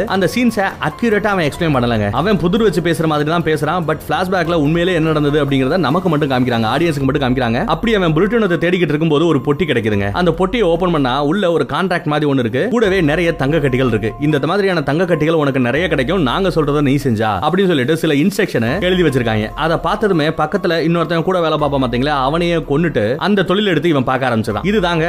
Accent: native